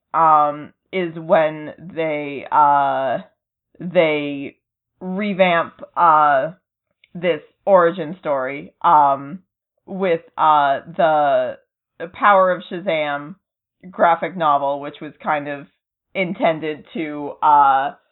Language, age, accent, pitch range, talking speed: English, 20-39, American, 150-190 Hz, 90 wpm